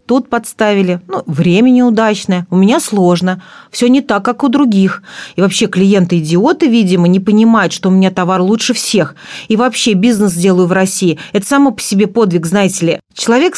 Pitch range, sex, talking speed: 180-240 Hz, female, 175 wpm